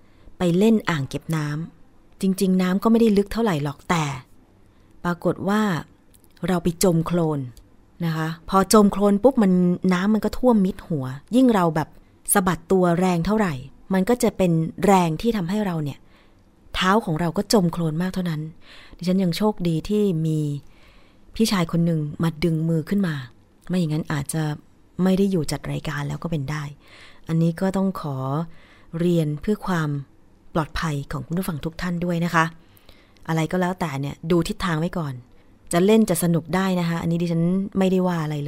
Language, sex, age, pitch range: Thai, female, 20-39, 150-190 Hz